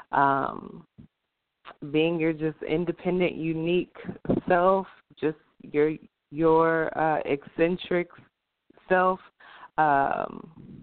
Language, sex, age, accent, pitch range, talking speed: English, female, 20-39, American, 140-165 Hz, 80 wpm